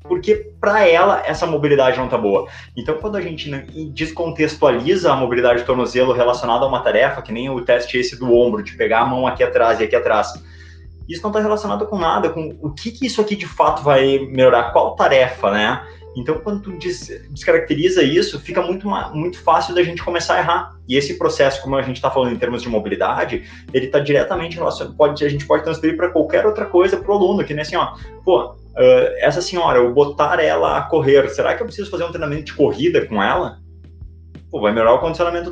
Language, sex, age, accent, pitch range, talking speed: Portuguese, male, 20-39, Brazilian, 120-165 Hz, 220 wpm